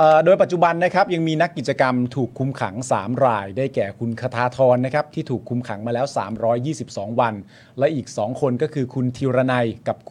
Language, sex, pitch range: Thai, male, 120-155 Hz